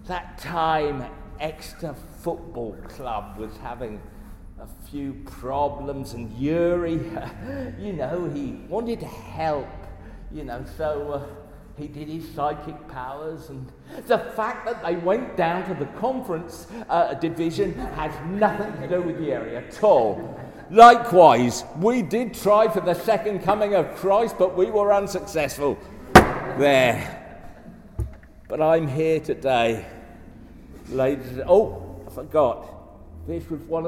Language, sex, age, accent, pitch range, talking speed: English, male, 50-69, British, 120-200 Hz, 130 wpm